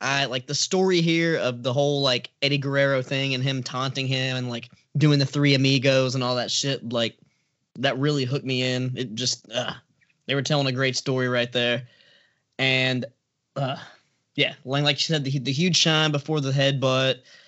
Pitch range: 130-155 Hz